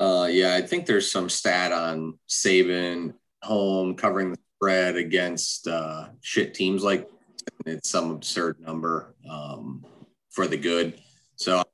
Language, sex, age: English, male, 30-49